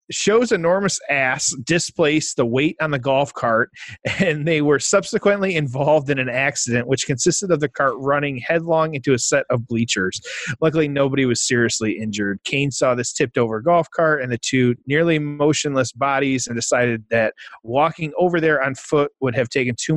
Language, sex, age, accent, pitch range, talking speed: English, male, 30-49, American, 120-155 Hz, 180 wpm